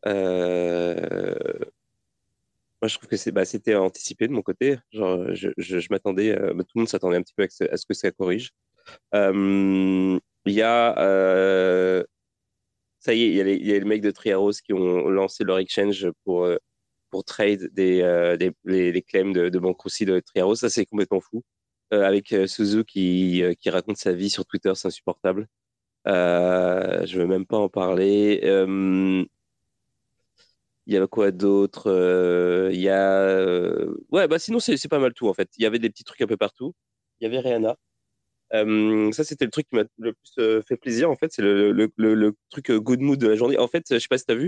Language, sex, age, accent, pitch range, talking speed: French, male, 30-49, French, 95-115 Hz, 220 wpm